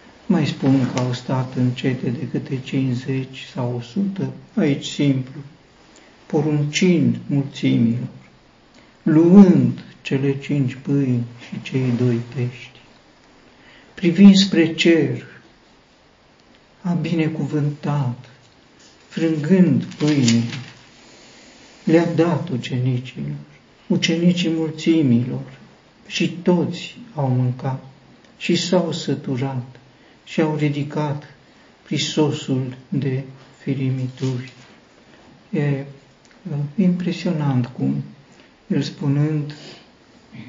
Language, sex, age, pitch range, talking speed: Romanian, male, 60-79, 130-155 Hz, 75 wpm